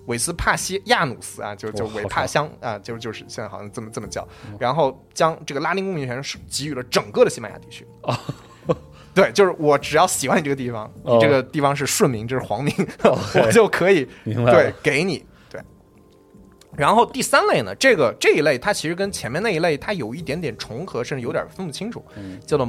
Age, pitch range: 20-39, 125-205 Hz